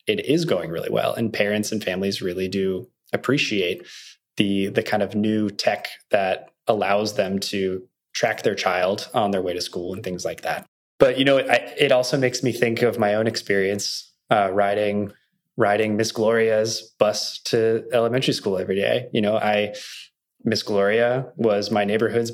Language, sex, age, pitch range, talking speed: English, male, 20-39, 100-115 Hz, 175 wpm